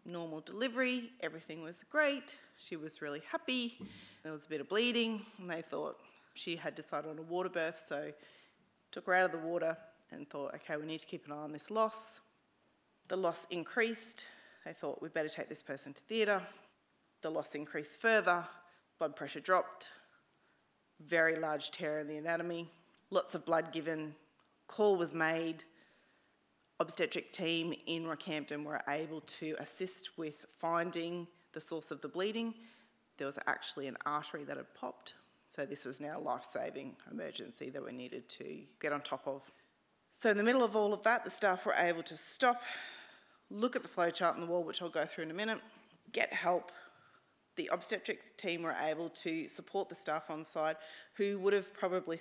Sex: female